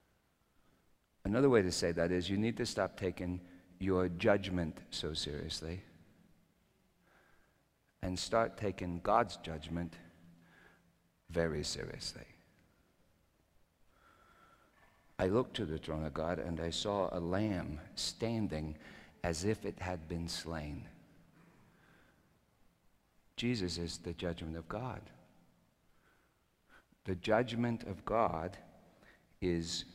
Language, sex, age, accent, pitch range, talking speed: English, male, 50-69, American, 85-105 Hz, 105 wpm